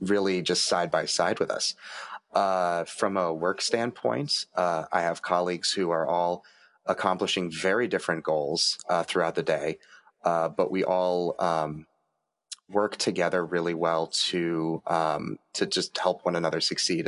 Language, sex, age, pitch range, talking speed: English, male, 30-49, 85-95 Hz, 155 wpm